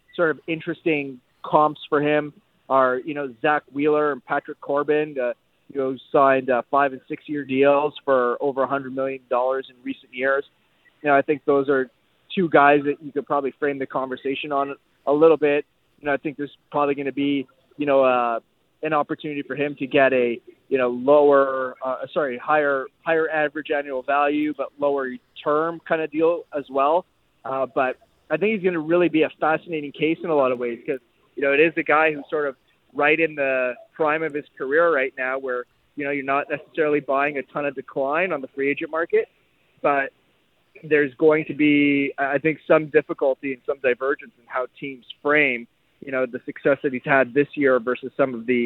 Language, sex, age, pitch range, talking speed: English, male, 20-39, 135-150 Hz, 210 wpm